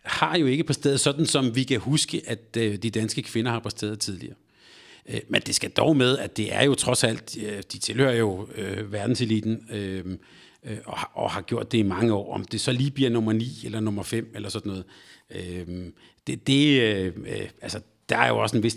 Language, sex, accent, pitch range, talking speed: Danish, male, native, 105-130 Hz, 200 wpm